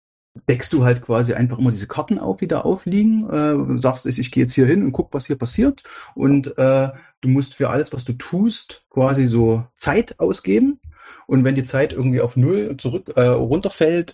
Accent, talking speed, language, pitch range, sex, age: German, 200 wpm, German, 110-135 Hz, male, 30-49